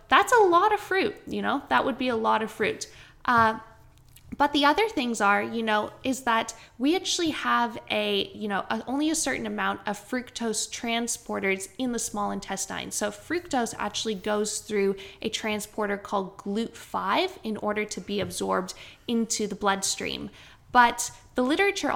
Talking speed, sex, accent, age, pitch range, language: 170 wpm, female, American, 20-39, 205-250 Hz, English